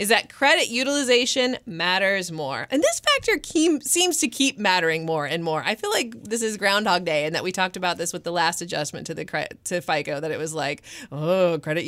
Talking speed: 220 wpm